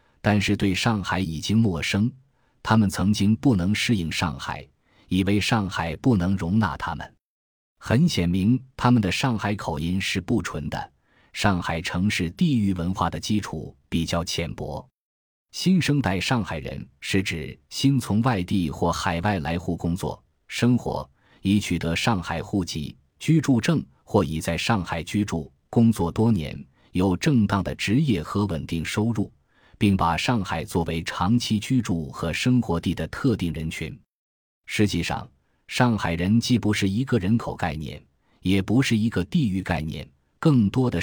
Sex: male